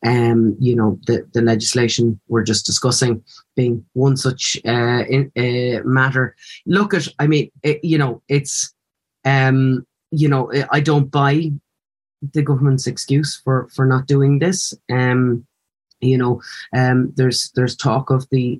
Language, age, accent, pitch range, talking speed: English, 30-49, Irish, 120-135 Hz, 155 wpm